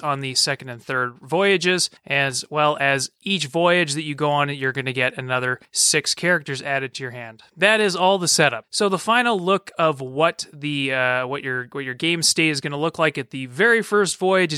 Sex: male